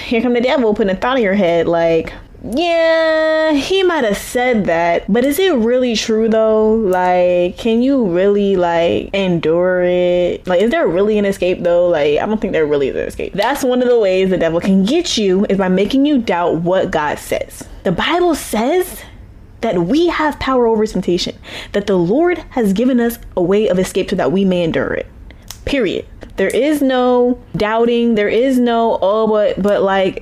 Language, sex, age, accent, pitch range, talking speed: English, female, 10-29, American, 185-255 Hz, 200 wpm